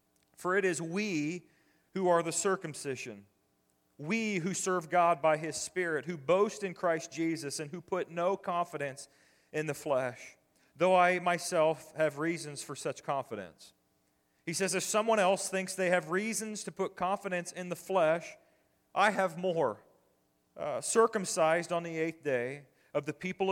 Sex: male